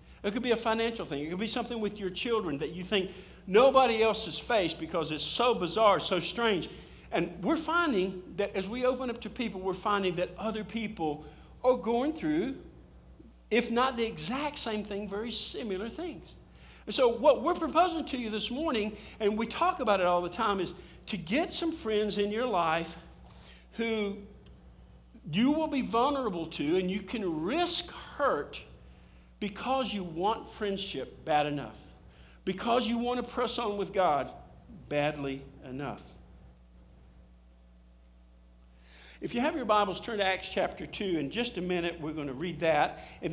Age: 50-69